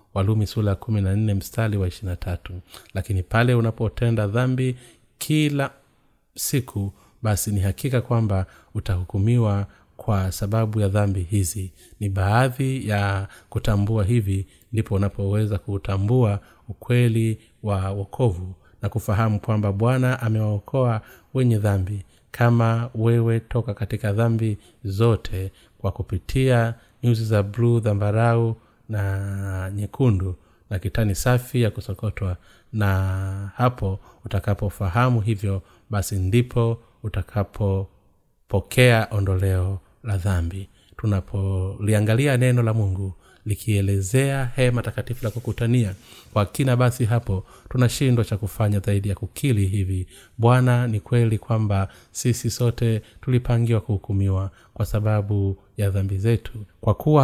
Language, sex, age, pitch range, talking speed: Swahili, male, 30-49, 100-115 Hz, 110 wpm